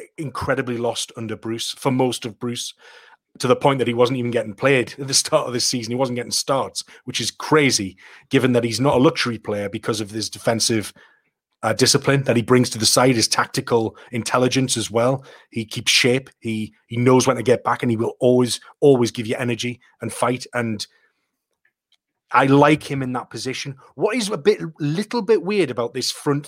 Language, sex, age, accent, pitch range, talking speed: English, male, 30-49, British, 120-145 Hz, 205 wpm